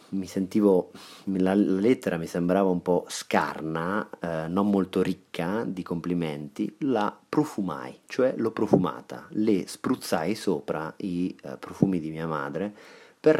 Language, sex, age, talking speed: Italian, male, 30-49, 135 wpm